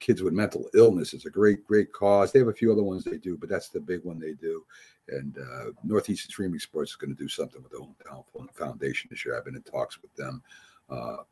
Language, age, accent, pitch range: English, 60-79, American, 95-130 Hz